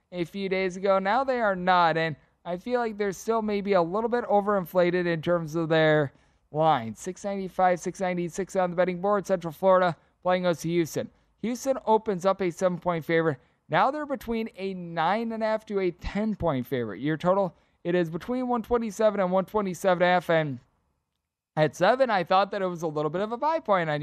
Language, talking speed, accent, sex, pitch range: English, 195 wpm, American, male, 160-210 Hz